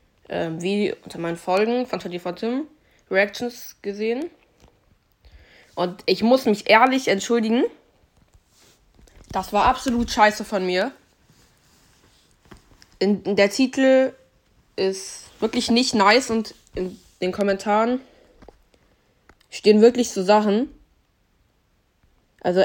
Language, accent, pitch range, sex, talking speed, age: German, German, 190-230 Hz, female, 105 wpm, 20-39